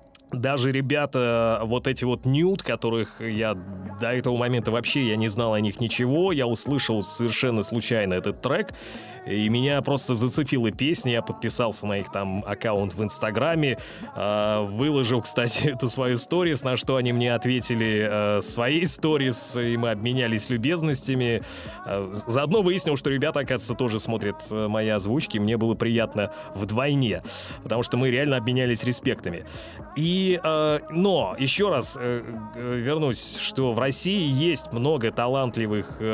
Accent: native